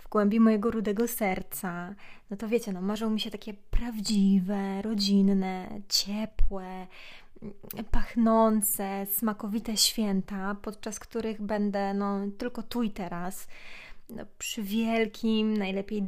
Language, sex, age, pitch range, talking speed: Polish, female, 20-39, 195-230 Hz, 115 wpm